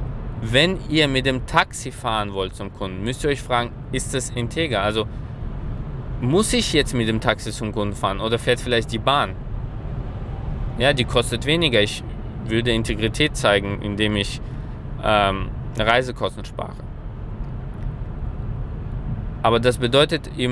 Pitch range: 115-135 Hz